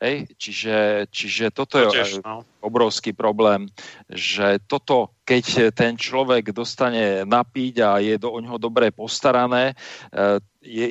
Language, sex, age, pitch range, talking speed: Slovak, male, 40-59, 110-125 Hz, 110 wpm